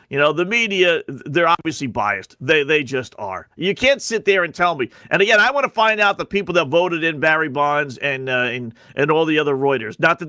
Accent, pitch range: American, 150-190 Hz